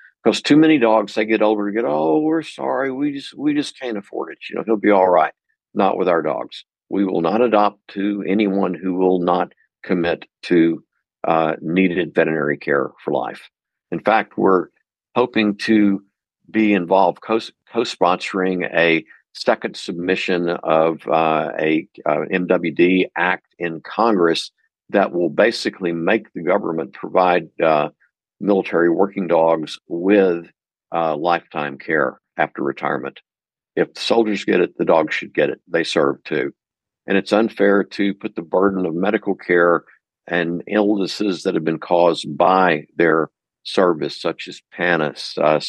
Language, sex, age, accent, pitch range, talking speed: English, male, 50-69, American, 85-105 Hz, 155 wpm